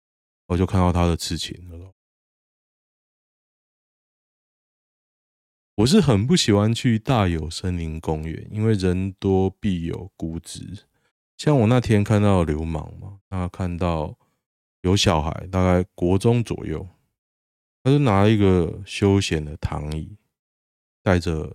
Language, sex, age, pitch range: Chinese, male, 20-39, 80-105 Hz